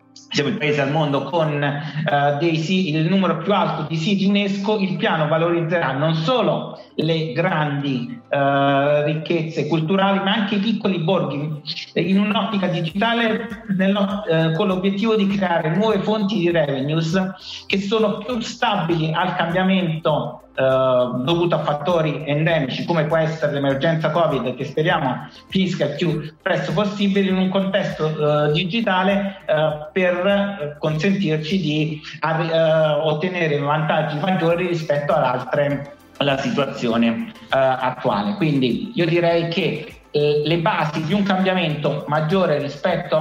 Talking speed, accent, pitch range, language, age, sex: 135 wpm, native, 150-190 Hz, Italian, 50-69, male